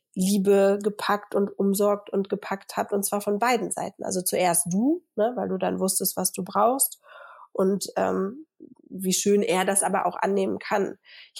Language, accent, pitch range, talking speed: German, German, 195-225 Hz, 175 wpm